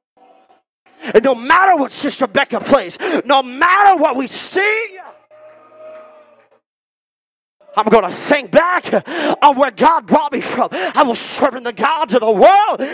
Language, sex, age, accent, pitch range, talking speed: English, male, 30-49, American, 250-335 Hz, 145 wpm